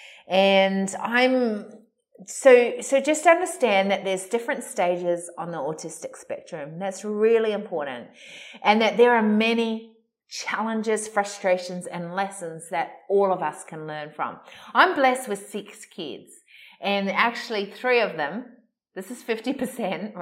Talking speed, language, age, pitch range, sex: 135 wpm, English, 30-49, 180-230 Hz, female